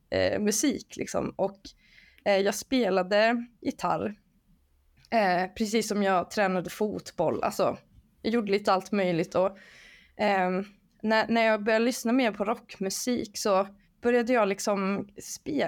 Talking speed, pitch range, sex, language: 135 wpm, 190-235 Hz, female, Swedish